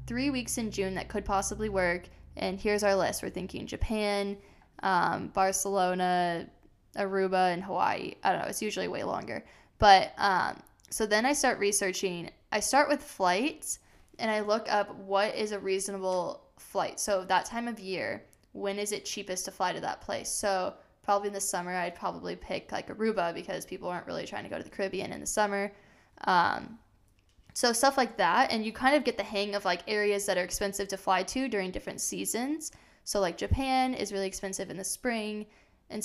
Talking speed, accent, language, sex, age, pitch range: 195 wpm, American, English, female, 10-29, 190-220 Hz